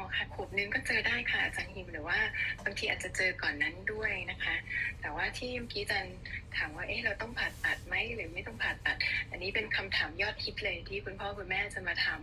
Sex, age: female, 20-39